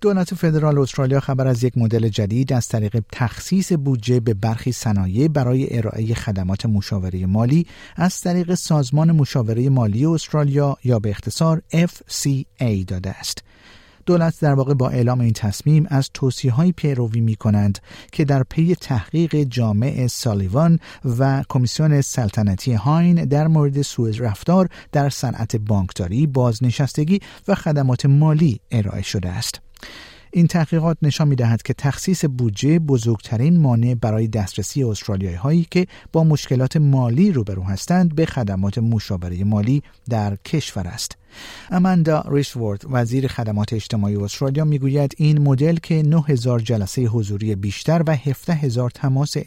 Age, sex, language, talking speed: 50-69, male, Persian, 130 wpm